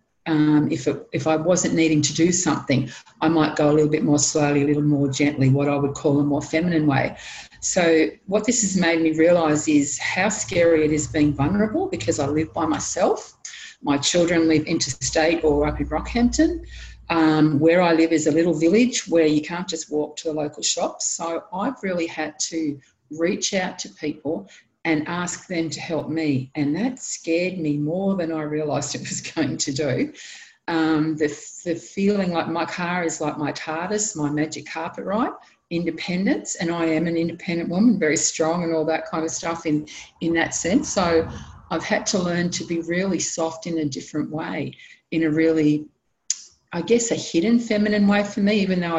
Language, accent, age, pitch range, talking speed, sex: English, Australian, 50-69, 150-175 Hz, 200 wpm, female